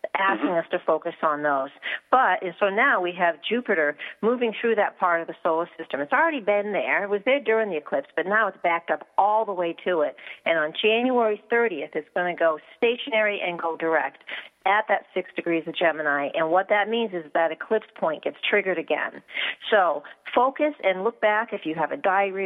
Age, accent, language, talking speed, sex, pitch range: 50-69, American, English, 210 wpm, female, 170-215 Hz